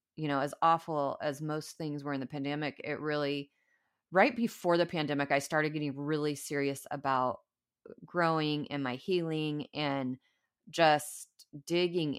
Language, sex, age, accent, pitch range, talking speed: English, female, 30-49, American, 145-185 Hz, 150 wpm